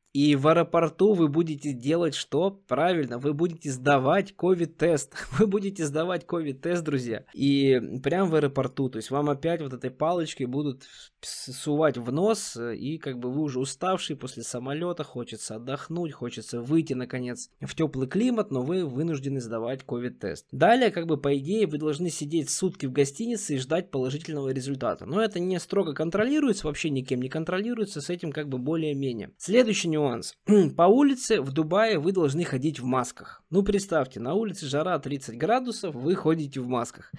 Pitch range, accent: 135-180 Hz, native